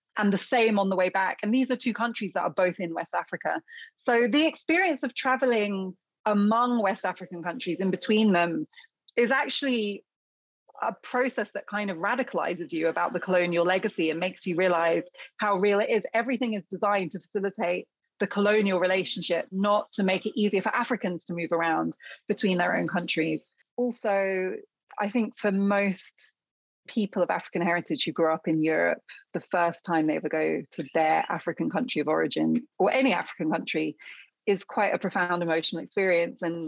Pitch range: 175-225 Hz